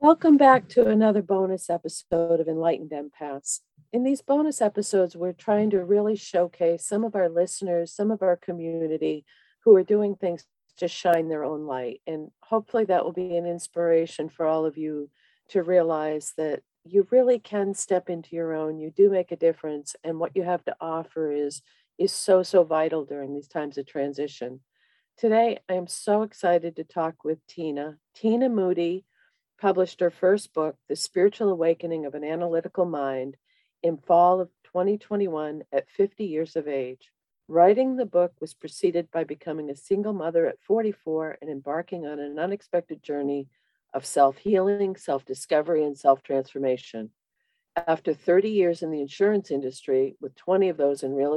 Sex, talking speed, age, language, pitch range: female, 170 wpm, 50-69, English, 150-195 Hz